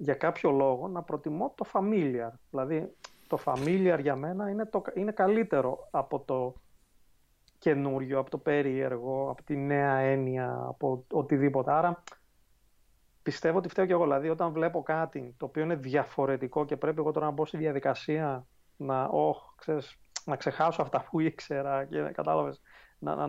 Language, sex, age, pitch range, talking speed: Greek, male, 30-49, 135-165 Hz, 150 wpm